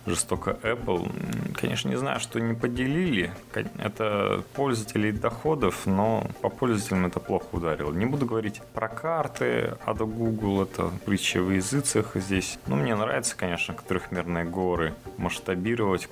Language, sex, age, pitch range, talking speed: Russian, male, 20-39, 90-115 Hz, 140 wpm